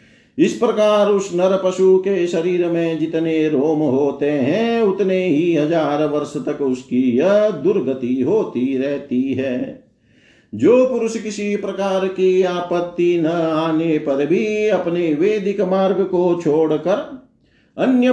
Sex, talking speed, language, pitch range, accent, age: male, 130 wpm, Hindi, 140-195 Hz, native, 50-69